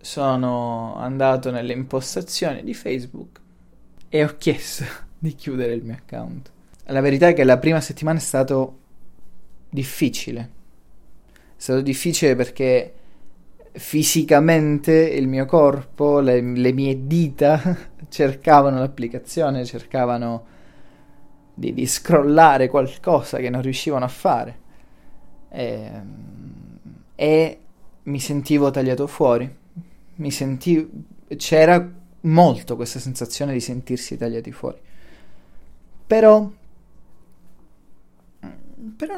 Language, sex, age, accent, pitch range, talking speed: Italian, male, 20-39, native, 125-160 Hz, 100 wpm